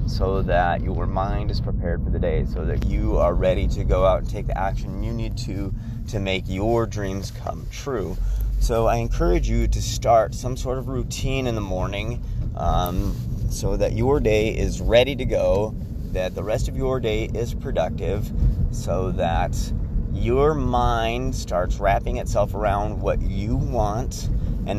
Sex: male